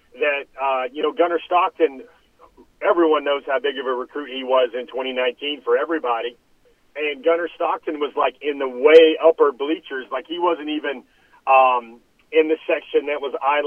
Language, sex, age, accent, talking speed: English, male, 40-59, American, 180 wpm